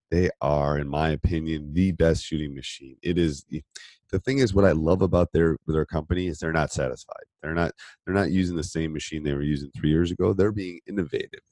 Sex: male